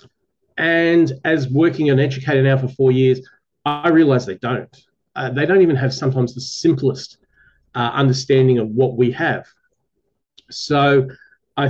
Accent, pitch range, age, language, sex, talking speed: Australian, 130-150 Hz, 40-59, English, male, 150 wpm